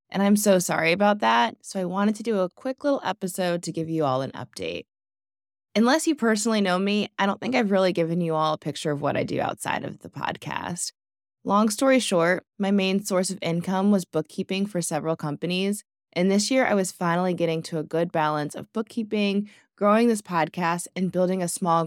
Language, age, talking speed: English, 20-39, 210 wpm